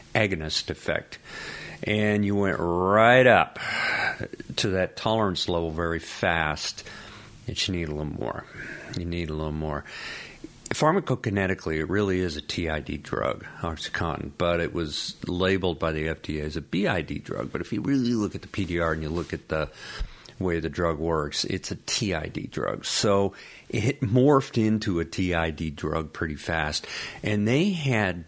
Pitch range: 80-110 Hz